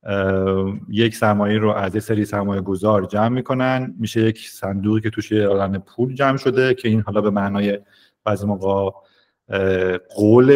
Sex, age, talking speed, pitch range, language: male, 30-49, 155 wpm, 100-125 Hz, Persian